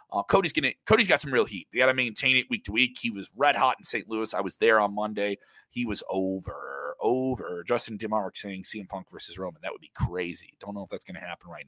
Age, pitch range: 30-49, 115-165 Hz